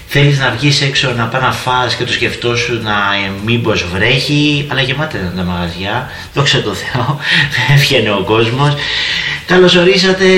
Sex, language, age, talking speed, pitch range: male, Greek, 30-49, 155 wpm, 100-140 Hz